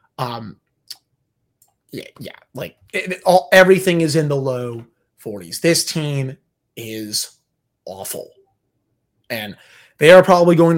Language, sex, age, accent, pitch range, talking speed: English, male, 30-49, American, 130-165 Hz, 105 wpm